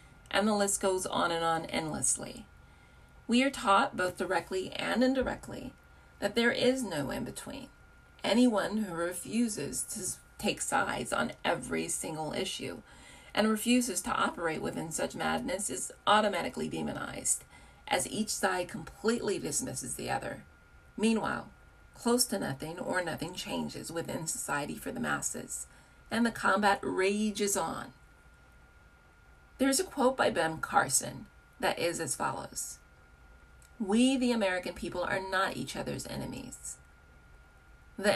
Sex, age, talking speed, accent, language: female, 40-59, 130 wpm, American, English